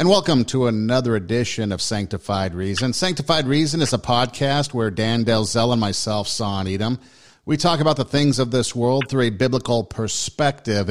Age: 50-69